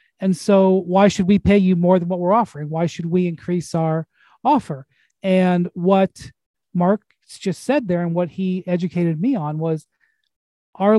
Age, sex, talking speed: 40-59, male, 175 wpm